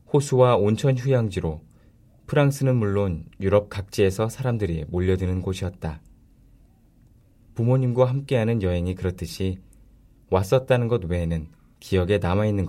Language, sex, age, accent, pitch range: Korean, male, 20-39, native, 90-120 Hz